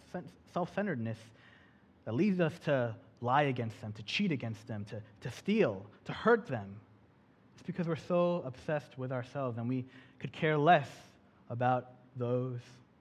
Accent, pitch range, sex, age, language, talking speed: American, 120-180 Hz, male, 30-49, English, 150 wpm